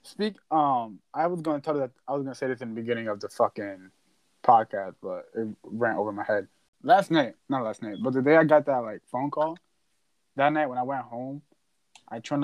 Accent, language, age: American, English, 20-39